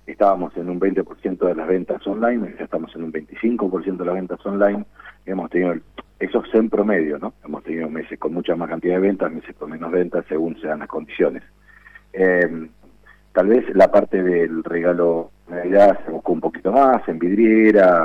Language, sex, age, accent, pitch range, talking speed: Spanish, male, 50-69, Argentinian, 85-105 Hz, 195 wpm